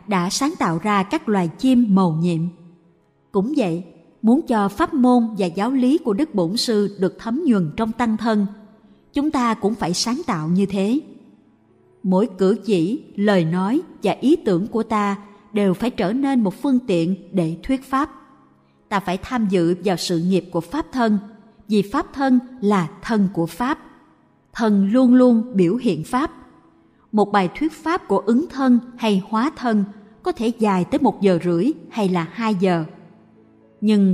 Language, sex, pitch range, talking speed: Vietnamese, female, 190-250 Hz, 180 wpm